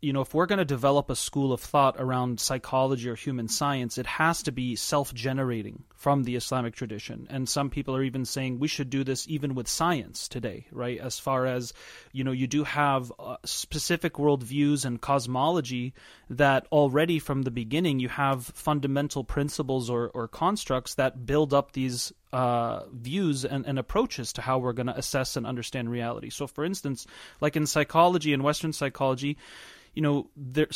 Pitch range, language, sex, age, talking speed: 130-145 Hz, English, male, 30-49, 185 wpm